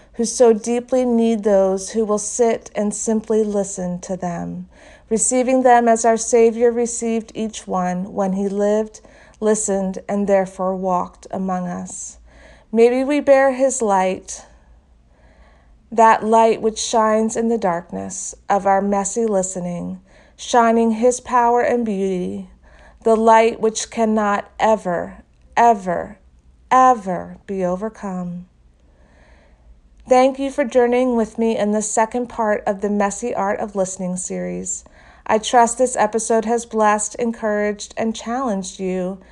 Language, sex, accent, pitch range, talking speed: English, female, American, 190-230 Hz, 135 wpm